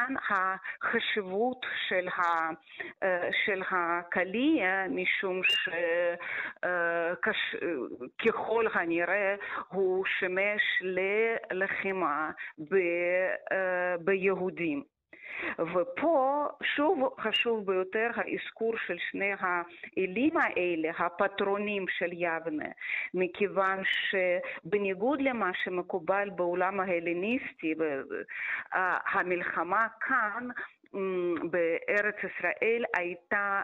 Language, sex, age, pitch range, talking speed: Hebrew, female, 30-49, 175-225 Hz, 65 wpm